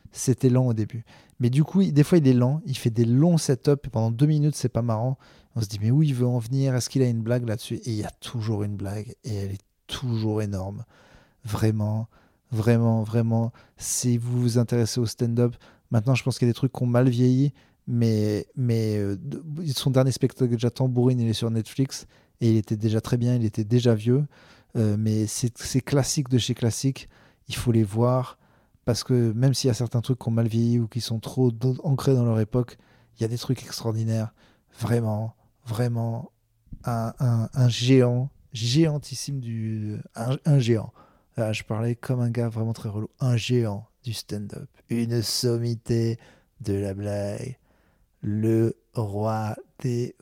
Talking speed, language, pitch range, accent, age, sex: 200 wpm, French, 110-130 Hz, French, 30-49, male